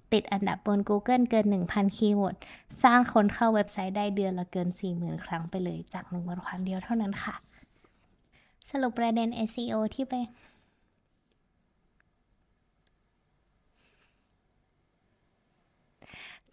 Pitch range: 200-230 Hz